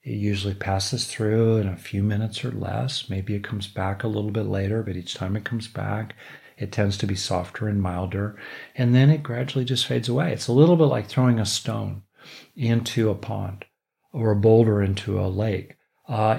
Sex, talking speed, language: male, 205 wpm, English